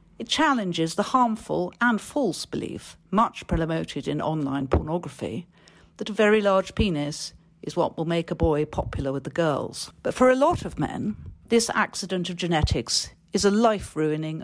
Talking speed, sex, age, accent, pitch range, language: 165 wpm, female, 50-69, British, 160-225 Hz, English